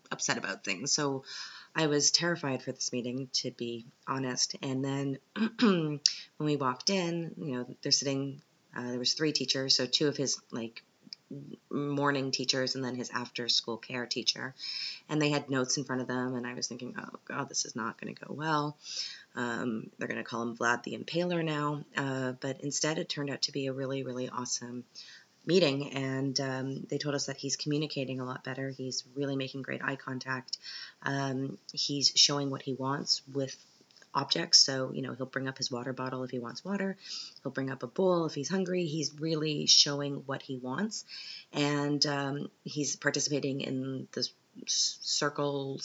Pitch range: 130-145 Hz